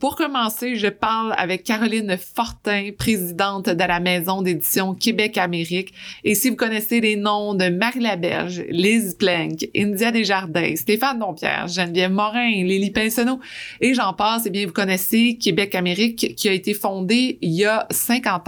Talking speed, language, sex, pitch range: 155 wpm, French, female, 185-225 Hz